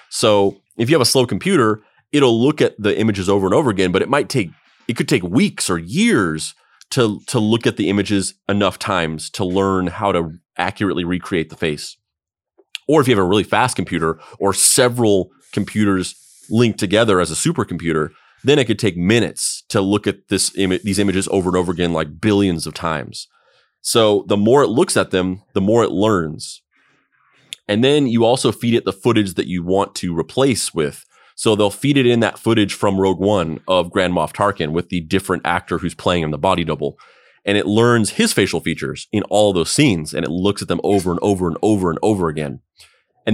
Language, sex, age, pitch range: English, male, 30-49, 90-110 Hz